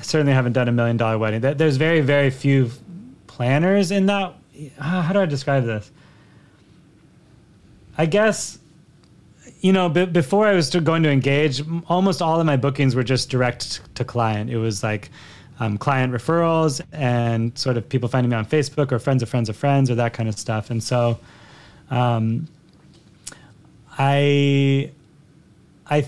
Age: 30-49